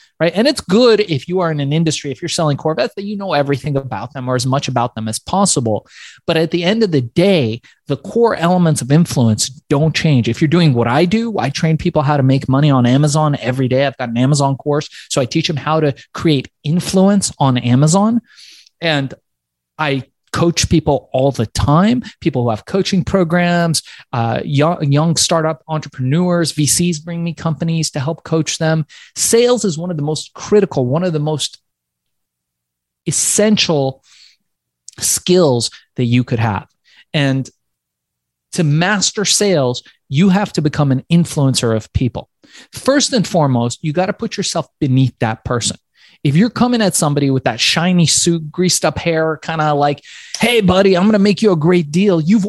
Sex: male